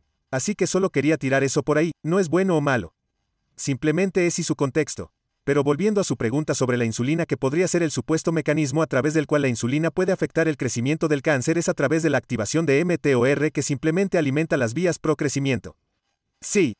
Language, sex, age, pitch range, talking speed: Spanish, male, 40-59, 135-165 Hz, 215 wpm